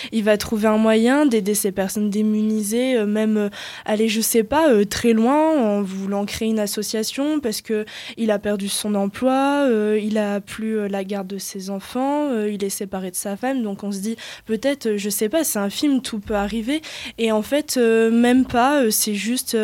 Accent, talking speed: French, 220 wpm